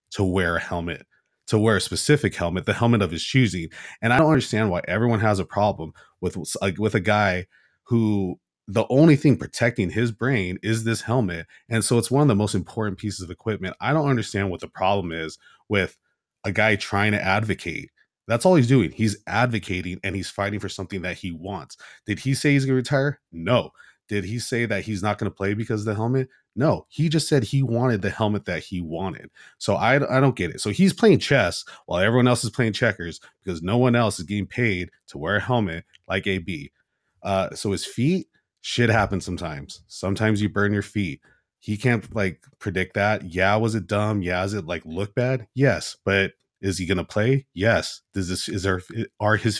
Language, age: English, 30-49